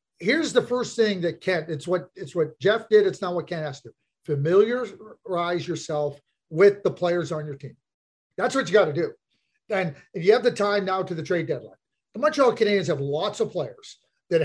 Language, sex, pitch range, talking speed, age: English, male, 175-235 Hz, 215 wpm, 40-59